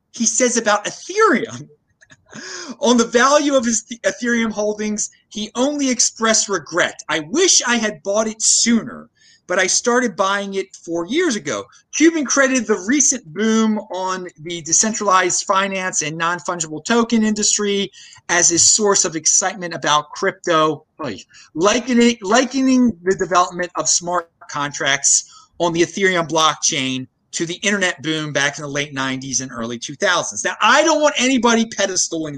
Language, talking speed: English, 150 wpm